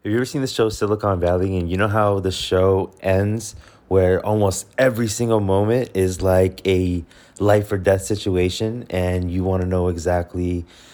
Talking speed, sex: 180 wpm, male